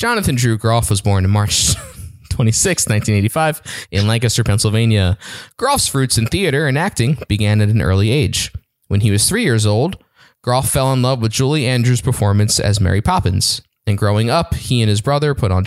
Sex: male